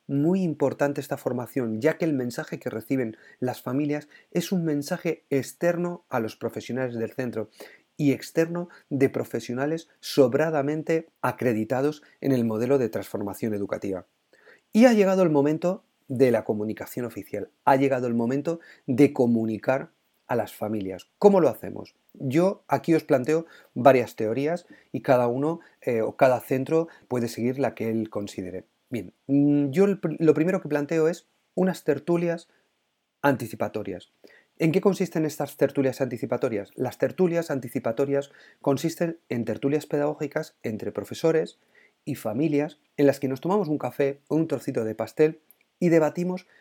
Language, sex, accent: Spanish, male, Spanish